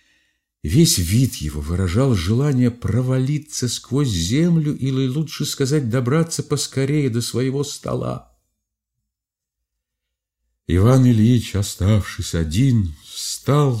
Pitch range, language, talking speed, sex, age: 80-120 Hz, Russian, 90 wpm, male, 50-69